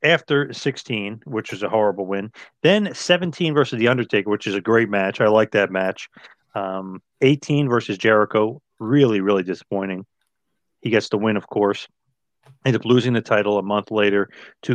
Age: 30-49